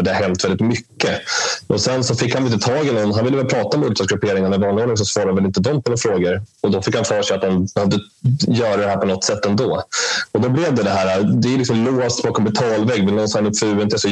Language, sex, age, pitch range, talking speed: Swedish, male, 20-39, 95-110 Hz, 270 wpm